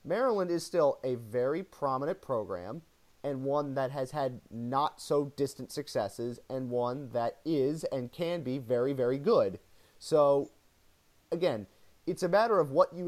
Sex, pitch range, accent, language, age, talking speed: male, 120-170 Hz, American, English, 30-49, 145 wpm